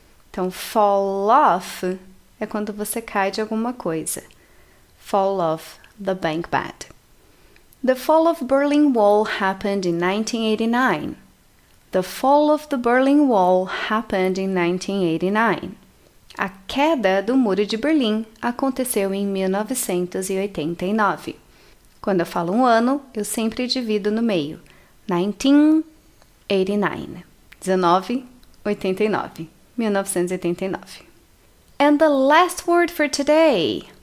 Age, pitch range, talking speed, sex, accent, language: 20-39, 190-260 Hz, 105 wpm, female, Brazilian, Portuguese